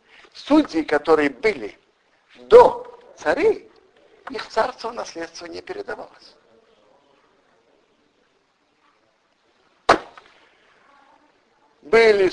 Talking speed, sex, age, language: 55 wpm, male, 50-69, Russian